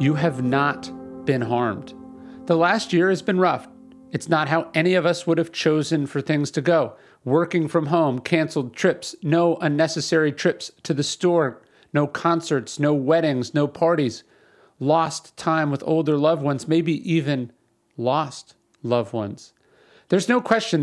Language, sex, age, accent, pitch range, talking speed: English, male, 40-59, American, 140-170 Hz, 160 wpm